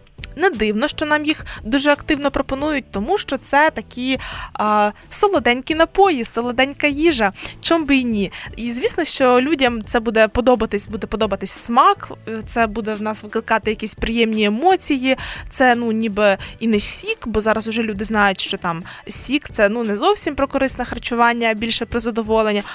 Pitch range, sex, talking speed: 220-310 Hz, female, 165 wpm